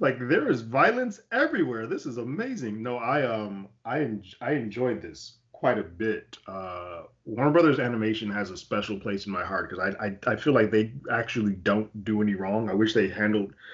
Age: 20-39